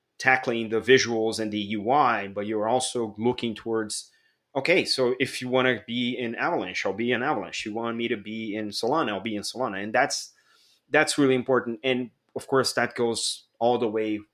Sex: male